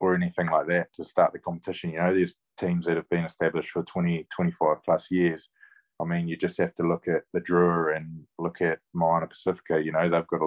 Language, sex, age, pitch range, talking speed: English, male, 20-39, 80-90 Hz, 235 wpm